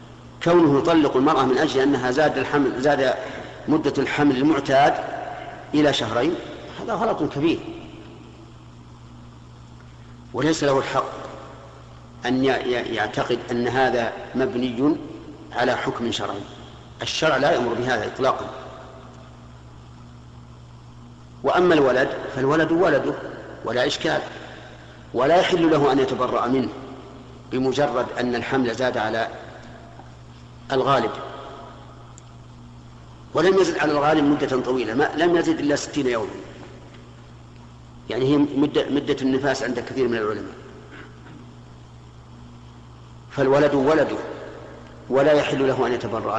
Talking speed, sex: 100 wpm, male